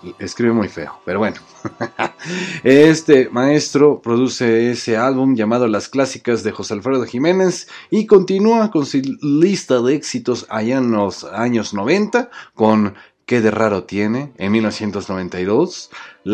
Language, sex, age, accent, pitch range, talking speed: Spanish, male, 30-49, Mexican, 110-150 Hz, 130 wpm